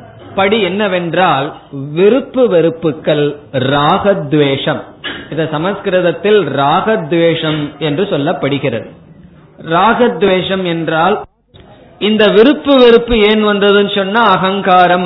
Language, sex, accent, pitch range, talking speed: Tamil, male, native, 150-200 Hz, 70 wpm